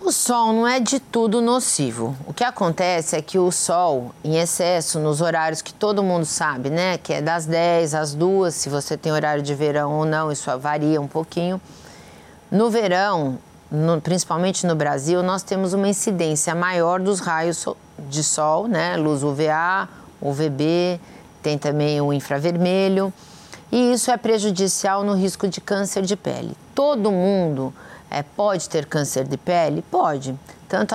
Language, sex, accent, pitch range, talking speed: Portuguese, female, Brazilian, 155-195 Hz, 165 wpm